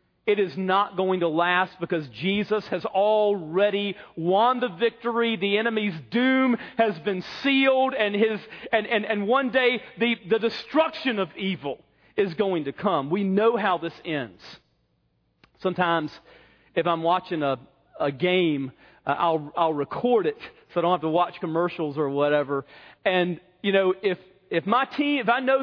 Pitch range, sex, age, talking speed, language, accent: 175-255 Hz, male, 40-59, 165 wpm, English, American